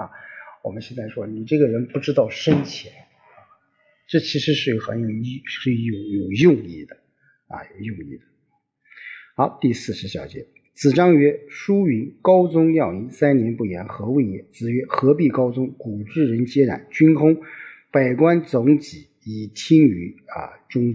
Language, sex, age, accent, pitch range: Chinese, male, 50-69, native, 110-145 Hz